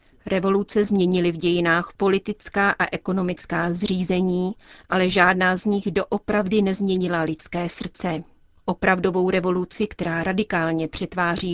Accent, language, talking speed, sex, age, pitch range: native, Czech, 110 wpm, female, 30-49, 170-200 Hz